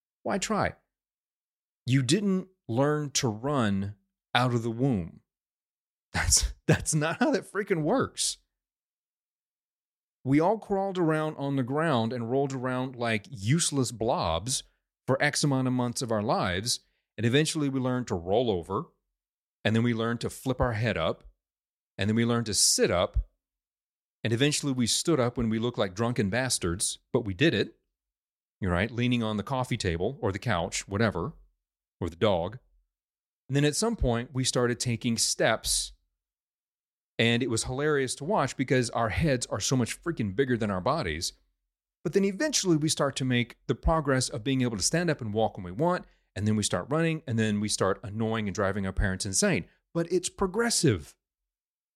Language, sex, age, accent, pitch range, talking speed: English, male, 30-49, American, 110-145 Hz, 180 wpm